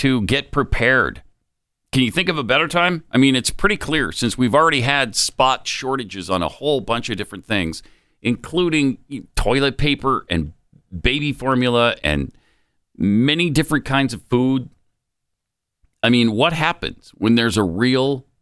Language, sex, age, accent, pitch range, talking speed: English, male, 50-69, American, 95-135 Hz, 155 wpm